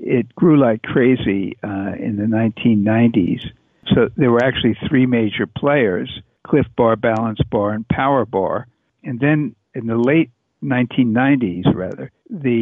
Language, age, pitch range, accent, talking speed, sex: English, 60-79, 110-135 Hz, American, 145 wpm, male